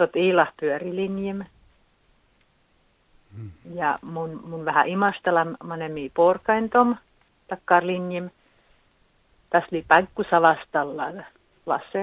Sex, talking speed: female, 80 wpm